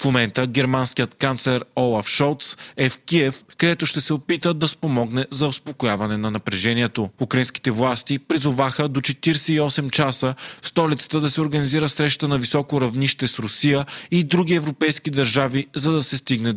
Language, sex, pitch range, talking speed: Bulgarian, male, 125-150 Hz, 155 wpm